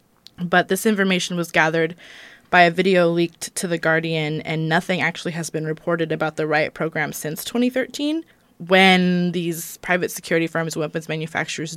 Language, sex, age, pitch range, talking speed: English, female, 20-39, 160-185 Hz, 165 wpm